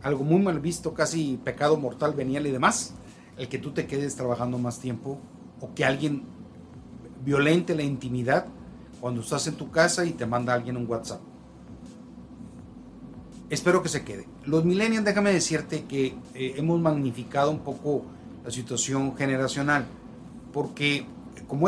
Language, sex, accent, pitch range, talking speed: Spanish, male, Mexican, 125-155 Hz, 150 wpm